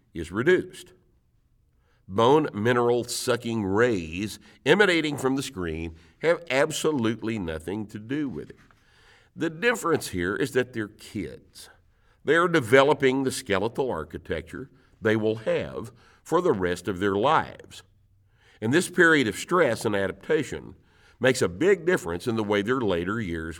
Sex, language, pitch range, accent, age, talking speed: male, English, 95-125 Hz, American, 50-69, 140 wpm